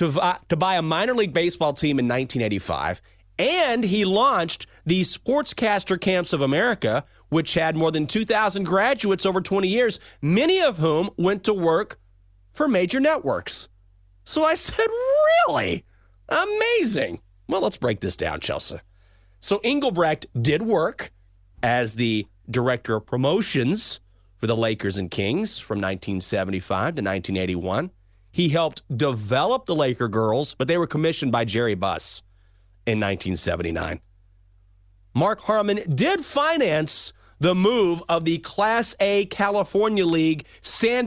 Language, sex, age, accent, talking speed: English, male, 30-49, American, 135 wpm